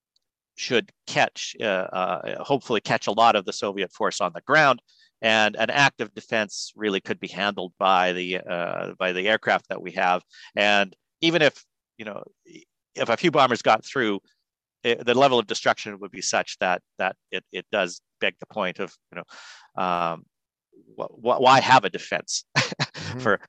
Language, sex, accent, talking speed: English, male, American, 180 wpm